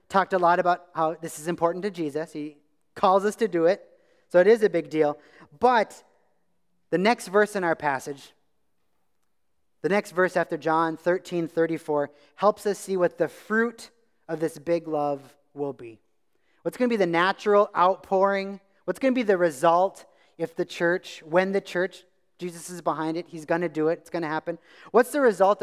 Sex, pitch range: male, 150-190 Hz